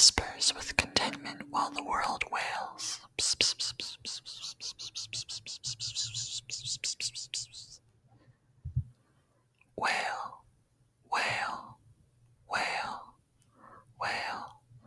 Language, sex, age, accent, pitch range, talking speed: English, male, 30-49, American, 115-125 Hz, 45 wpm